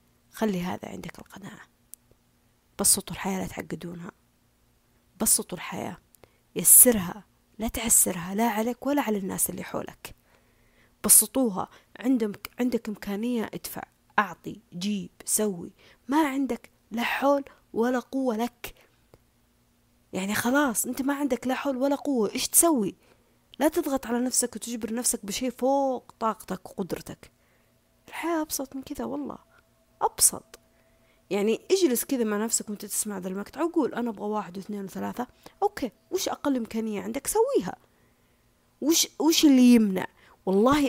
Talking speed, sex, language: 130 wpm, female, Arabic